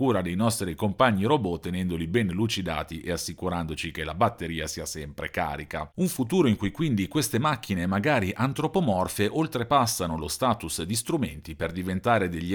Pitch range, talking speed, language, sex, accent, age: 90-125 Hz, 160 wpm, Italian, male, native, 40-59